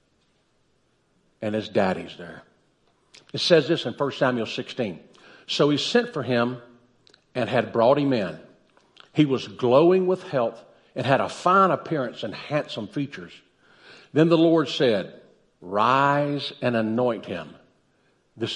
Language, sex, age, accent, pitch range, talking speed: English, male, 50-69, American, 120-165 Hz, 140 wpm